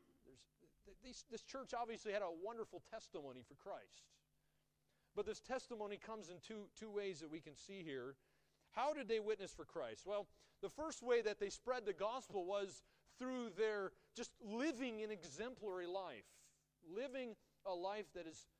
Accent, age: American, 40-59